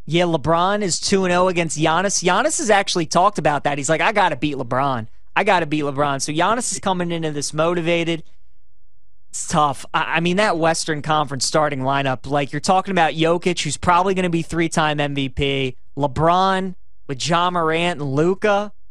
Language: English